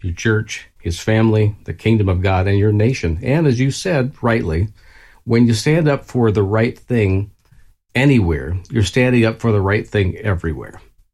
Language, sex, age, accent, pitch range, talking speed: English, male, 50-69, American, 85-110 Hz, 180 wpm